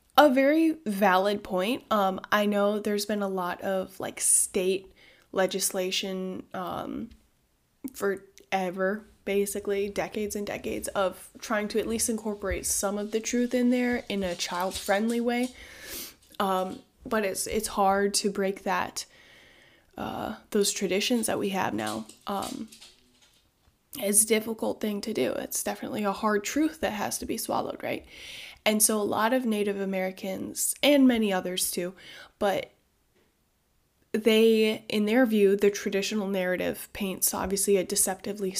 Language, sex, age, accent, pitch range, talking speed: English, female, 10-29, American, 190-220 Hz, 145 wpm